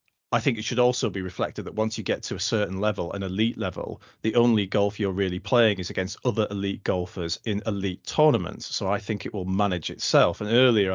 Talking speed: 225 wpm